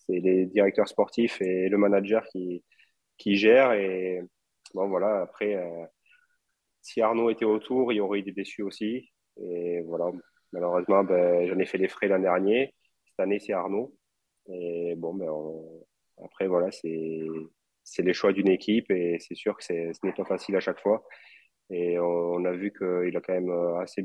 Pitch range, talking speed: 85-100 Hz, 180 wpm